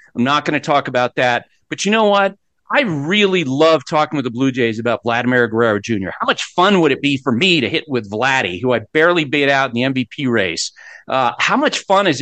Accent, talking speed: American, 240 wpm